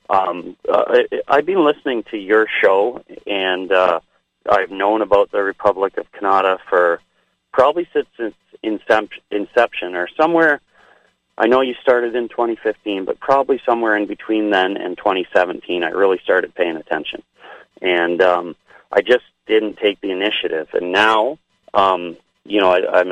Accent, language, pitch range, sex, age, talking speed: American, English, 95-125 Hz, male, 40-59, 150 wpm